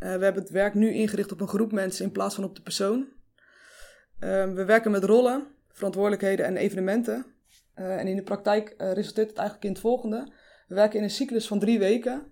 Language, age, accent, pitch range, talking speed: Dutch, 20-39, Dutch, 190-220 Hz, 220 wpm